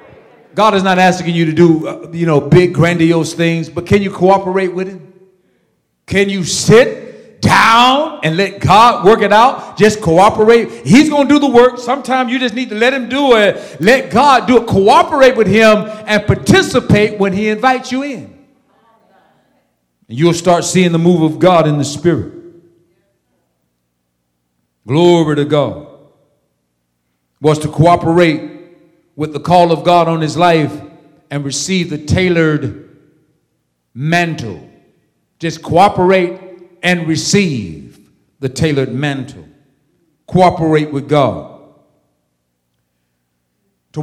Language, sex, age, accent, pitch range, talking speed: English, male, 50-69, American, 135-195 Hz, 135 wpm